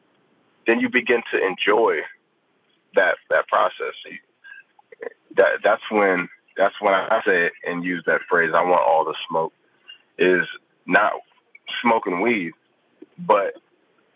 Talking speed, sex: 125 wpm, male